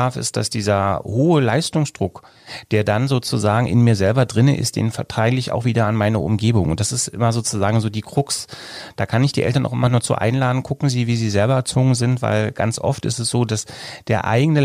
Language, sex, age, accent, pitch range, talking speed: German, male, 30-49, German, 105-130 Hz, 225 wpm